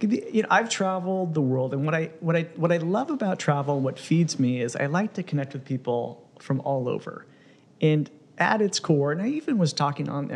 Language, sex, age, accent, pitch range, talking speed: English, male, 40-59, American, 130-165 Hz, 225 wpm